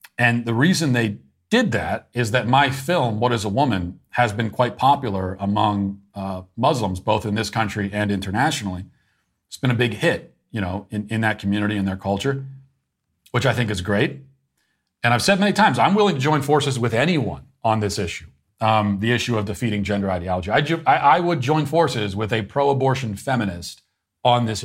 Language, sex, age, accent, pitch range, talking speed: English, male, 40-59, American, 100-130 Hz, 195 wpm